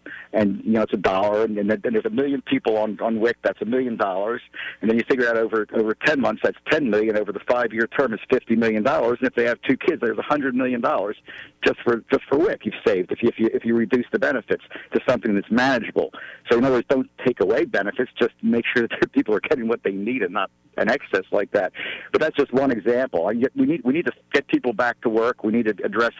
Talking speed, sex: 265 wpm, male